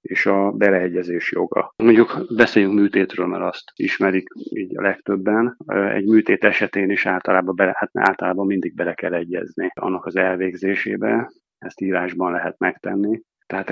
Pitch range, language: 95-105 Hz, Hungarian